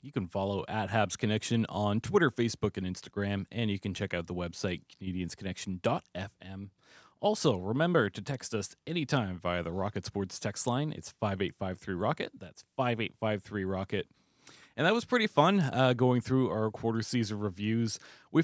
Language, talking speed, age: English, 155 wpm, 30-49